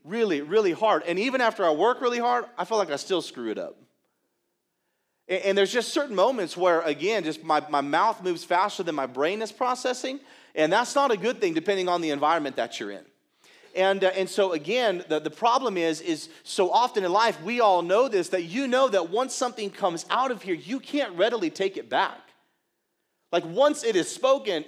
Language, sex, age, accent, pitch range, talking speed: English, male, 40-59, American, 180-260 Hz, 215 wpm